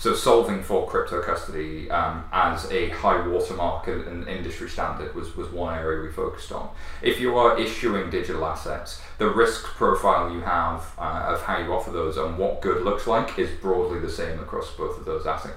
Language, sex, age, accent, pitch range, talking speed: English, male, 30-49, British, 85-100 Hz, 195 wpm